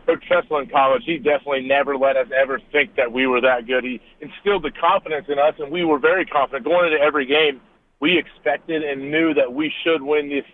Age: 40-59